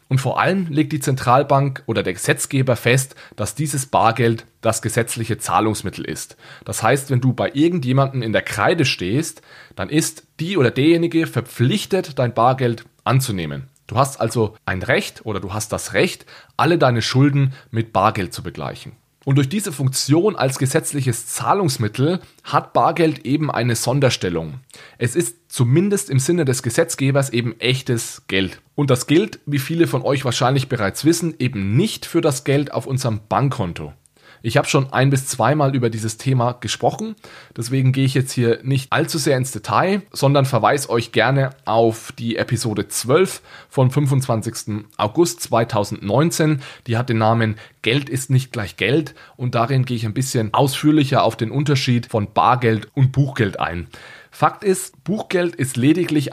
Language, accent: German, German